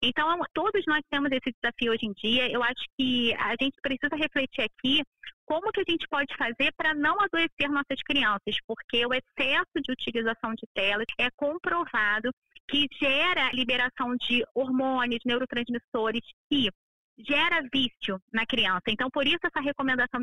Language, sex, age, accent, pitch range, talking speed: Portuguese, female, 20-39, Brazilian, 230-285 Hz, 155 wpm